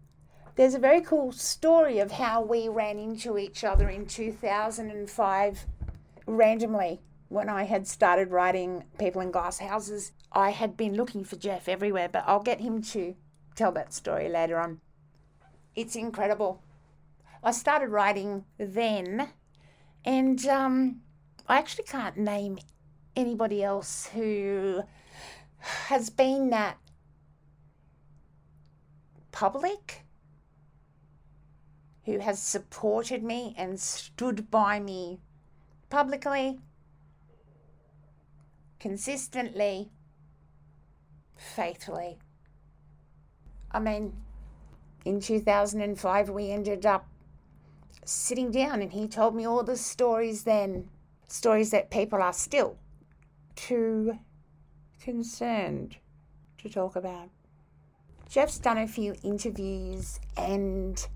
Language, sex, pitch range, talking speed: English, female, 150-225 Hz, 100 wpm